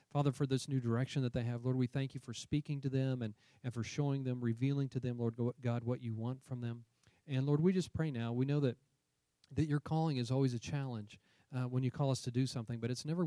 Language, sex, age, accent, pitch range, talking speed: English, male, 40-59, American, 110-130 Hz, 260 wpm